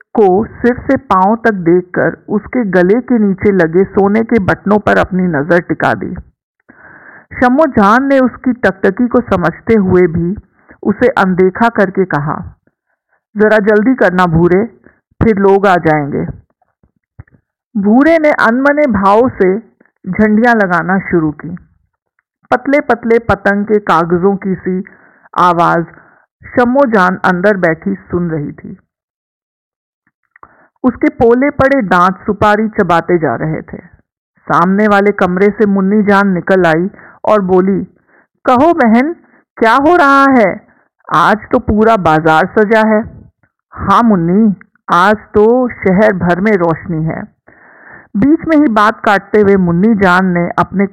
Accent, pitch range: native, 180-235 Hz